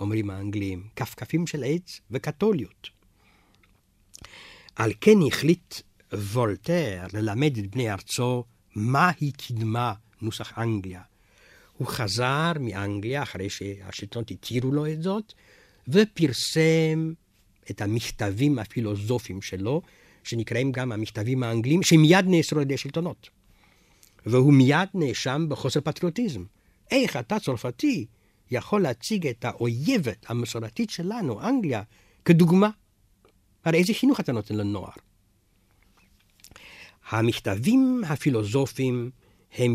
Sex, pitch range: male, 100-150 Hz